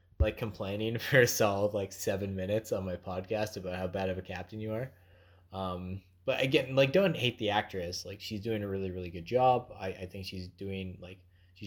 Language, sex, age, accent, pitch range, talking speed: English, male, 20-39, American, 90-115 Hz, 215 wpm